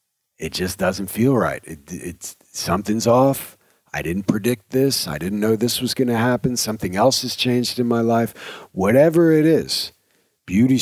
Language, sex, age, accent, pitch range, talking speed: English, male, 40-59, American, 95-125 Hz, 175 wpm